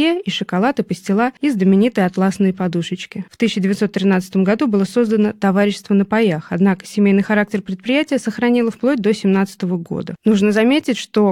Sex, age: female, 20-39